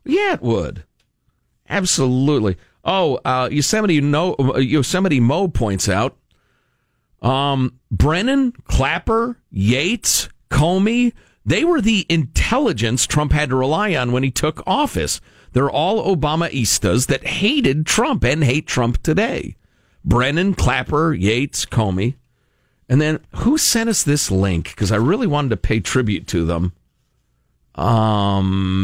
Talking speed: 130 wpm